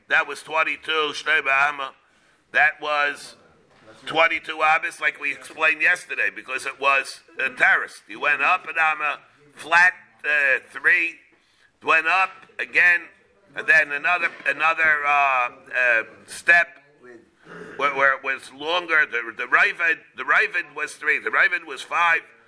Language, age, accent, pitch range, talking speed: English, 50-69, American, 140-170 Hz, 135 wpm